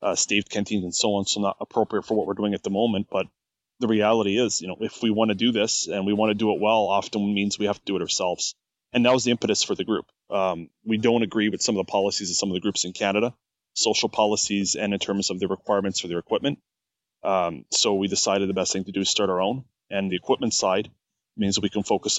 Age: 20-39